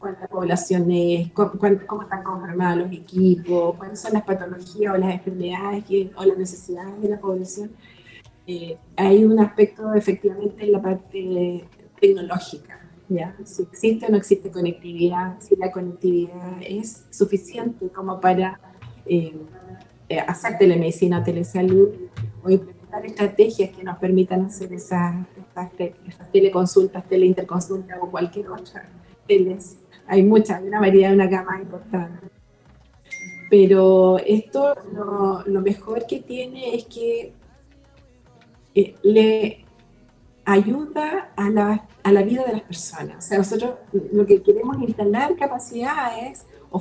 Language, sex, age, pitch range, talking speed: Spanish, female, 30-49, 185-210 Hz, 135 wpm